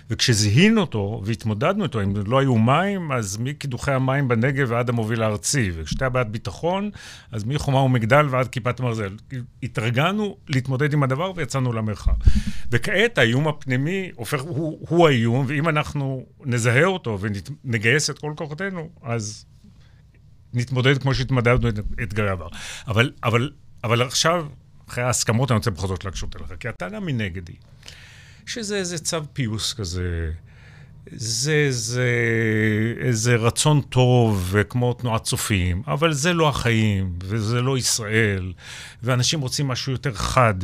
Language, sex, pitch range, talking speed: Hebrew, male, 115-140 Hz, 135 wpm